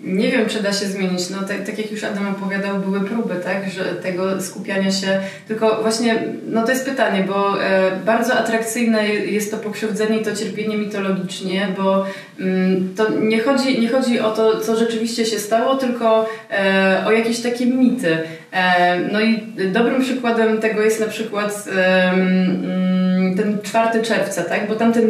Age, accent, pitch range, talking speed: 20-39, native, 200-225 Hz, 170 wpm